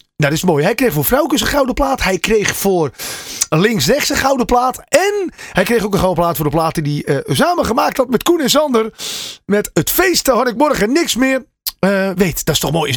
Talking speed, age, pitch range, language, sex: 240 wpm, 30-49, 180-280 Hz, Dutch, male